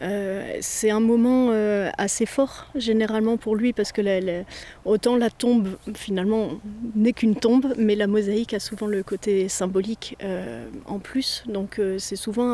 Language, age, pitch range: French, 30-49, 200-235 Hz